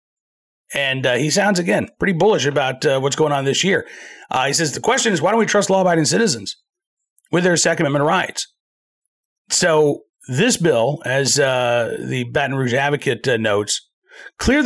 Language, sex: English, male